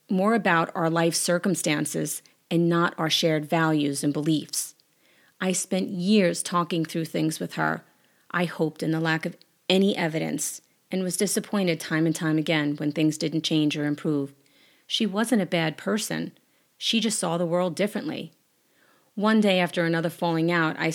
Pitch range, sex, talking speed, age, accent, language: 160-200 Hz, female, 170 wpm, 30-49, American, English